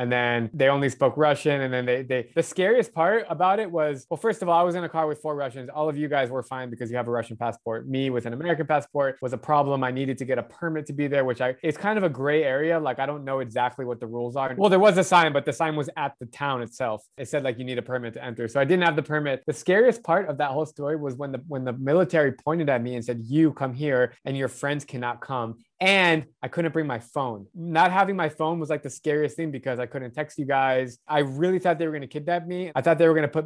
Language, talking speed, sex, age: English, 295 wpm, male, 20-39